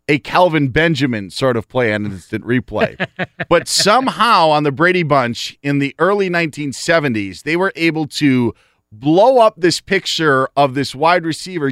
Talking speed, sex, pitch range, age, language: 160 wpm, male, 140-190 Hz, 30-49, English